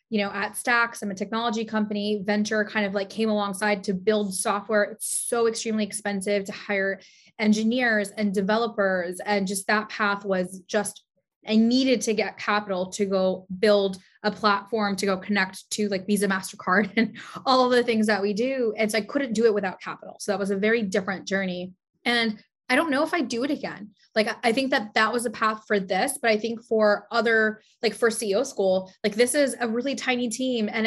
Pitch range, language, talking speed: 200-235 Hz, English, 210 wpm